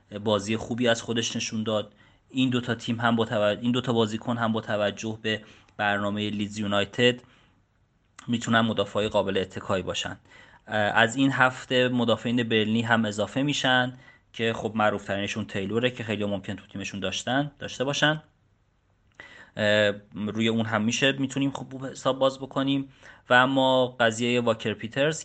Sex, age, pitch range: male, 30-49, 105-120 Hz